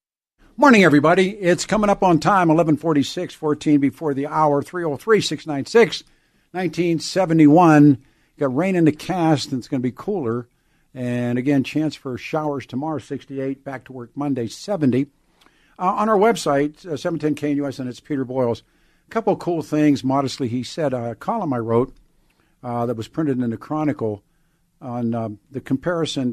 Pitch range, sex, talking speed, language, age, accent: 125-160 Hz, male, 165 wpm, English, 50-69, American